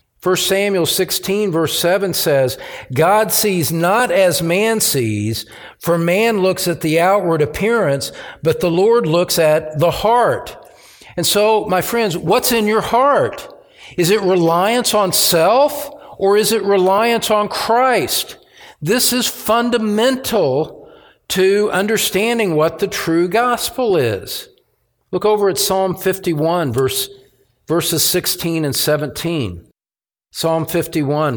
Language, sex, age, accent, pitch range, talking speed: English, male, 50-69, American, 145-205 Hz, 130 wpm